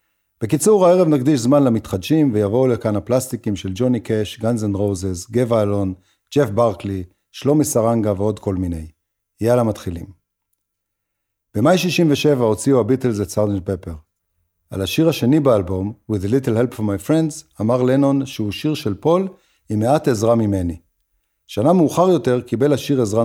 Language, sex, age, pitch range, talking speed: Hebrew, male, 50-69, 100-130 Hz, 150 wpm